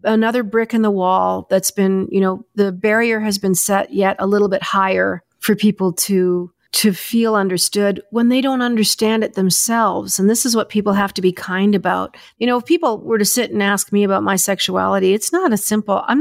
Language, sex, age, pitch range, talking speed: English, female, 40-59, 190-245 Hz, 220 wpm